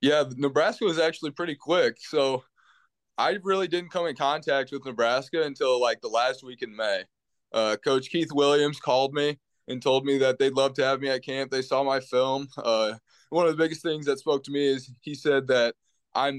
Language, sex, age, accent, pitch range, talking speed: English, male, 20-39, American, 120-145 Hz, 210 wpm